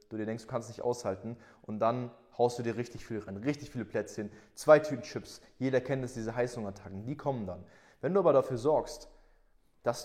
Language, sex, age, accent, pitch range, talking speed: German, male, 20-39, German, 115-140 Hz, 210 wpm